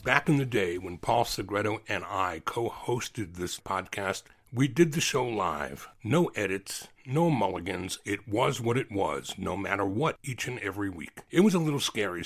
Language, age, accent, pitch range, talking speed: English, 60-79, American, 100-135 Hz, 185 wpm